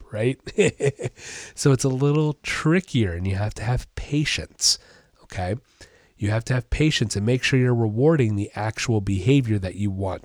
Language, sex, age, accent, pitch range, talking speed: English, male, 30-49, American, 100-140 Hz, 170 wpm